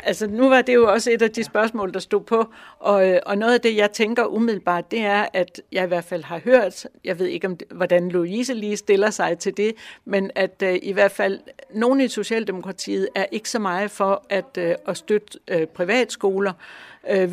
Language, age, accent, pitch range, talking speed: Danish, 60-79, native, 180-210 Hz, 220 wpm